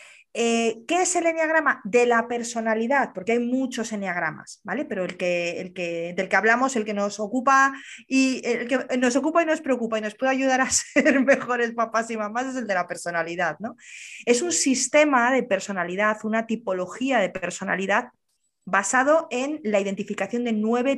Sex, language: female, Spanish